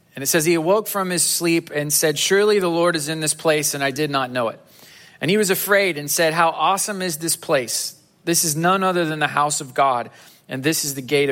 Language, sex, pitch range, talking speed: English, male, 135-165 Hz, 255 wpm